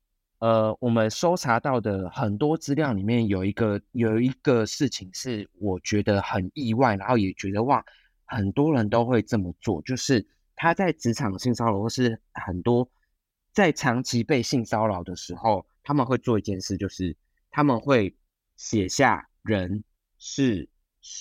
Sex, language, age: male, Chinese, 30-49